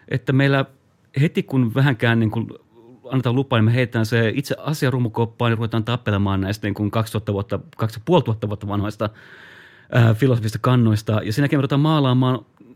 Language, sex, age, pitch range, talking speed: Finnish, male, 30-49, 105-135 Hz, 145 wpm